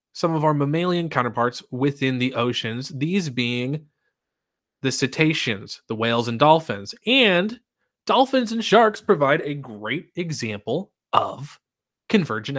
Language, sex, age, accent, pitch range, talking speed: English, male, 20-39, American, 120-175 Hz, 125 wpm